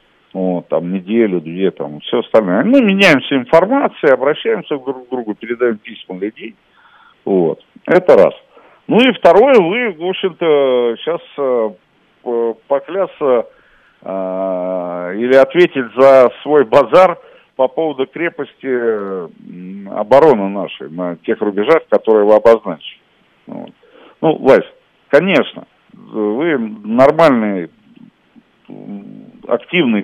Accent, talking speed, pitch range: native, 110 wpm, 100-145 Hz